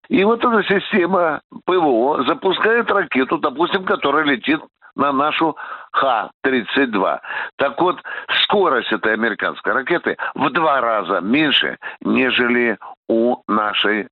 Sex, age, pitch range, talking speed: male, 60-79, 125-175 Hz, 110 wpm